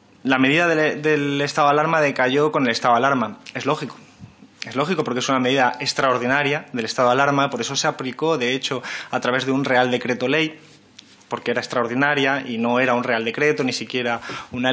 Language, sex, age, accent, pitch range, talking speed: Spanish, male, 20-39, Spanish, 125-145 Hz, 210 wpm